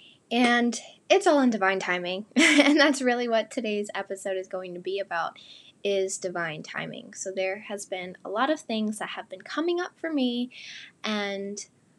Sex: female